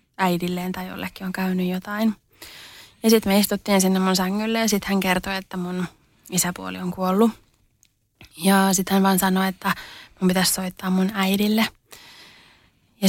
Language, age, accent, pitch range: Finnish, 30-49, native, 190-210 Hz